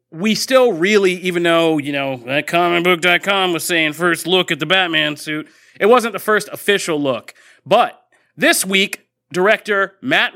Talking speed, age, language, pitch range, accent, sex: 160 wpm, 30-49, English, 155-195 Hz, American, male